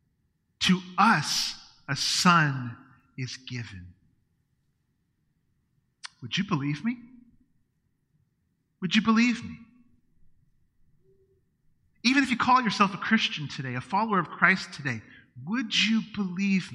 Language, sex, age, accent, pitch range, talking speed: English, male, 40-59, American, 145-225 Hz, 110 wpm